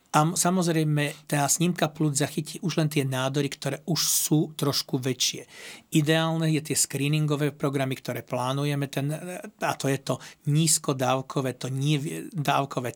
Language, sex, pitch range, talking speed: Slovak, male, 140-160 Hz, 145 wpm